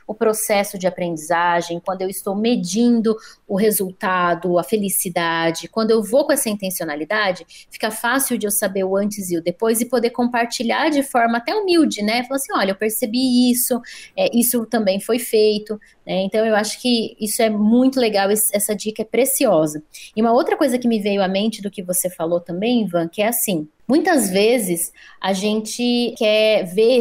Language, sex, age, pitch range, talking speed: Portuguese, female, 20-39, 190-240 Hz, 185 wpm